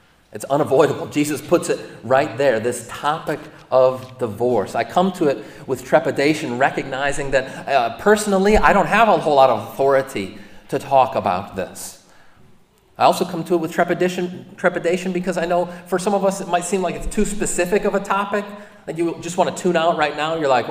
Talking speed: 195 wpm